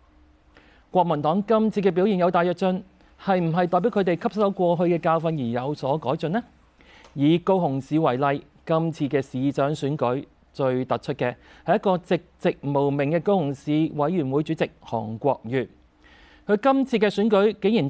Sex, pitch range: male, 130-180 Hz